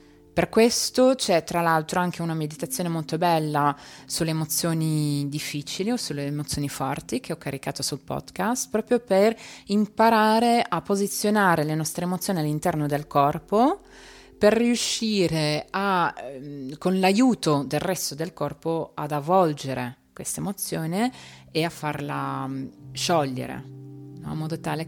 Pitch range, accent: 145-200 Hz, native